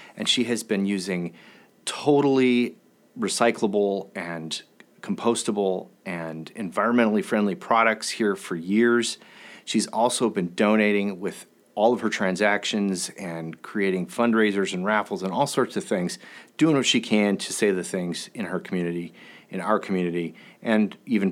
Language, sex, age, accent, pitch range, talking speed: English, male, 30-49, American, 95-115 Hz, 145 wpm